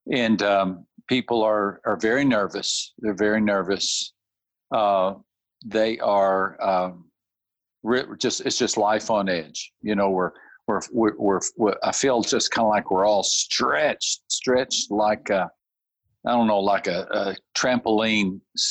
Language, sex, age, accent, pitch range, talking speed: English, male, 50-69, American, 100-120 Hz, 150 wpm